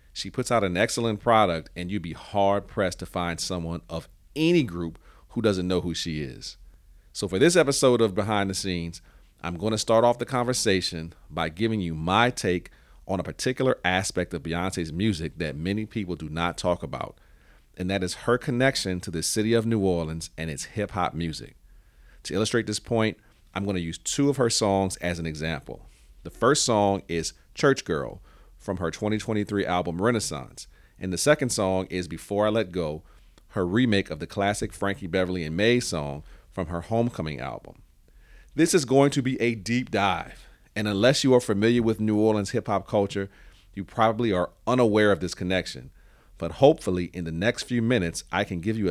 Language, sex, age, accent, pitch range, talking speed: English, male, 40-59, American, 85-110 Hz, 195 wpm